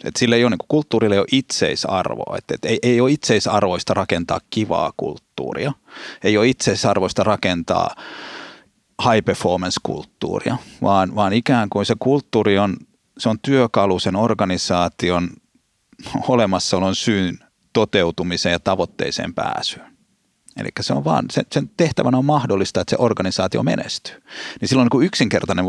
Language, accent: Finnish, native